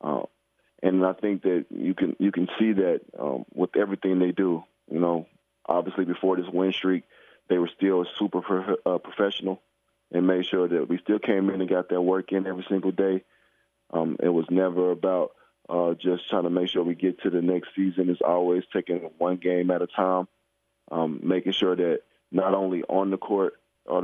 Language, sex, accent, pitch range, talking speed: English, male, American, 90-95 Hz, 200 wpm